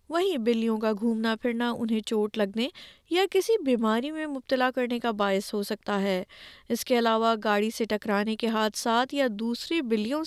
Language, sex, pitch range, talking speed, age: Urdu, female, 220-290 Hz, 175 wpm, 20-39